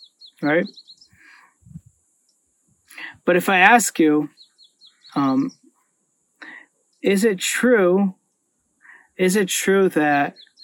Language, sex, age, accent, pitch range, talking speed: English, male, 30-49, American, 150-195 Hz, 80 wpm